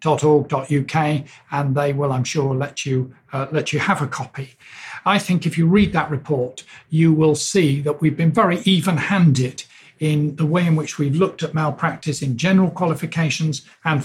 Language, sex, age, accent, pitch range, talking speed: English, male, 50-69, British, 140-165 Hz, 180 wpm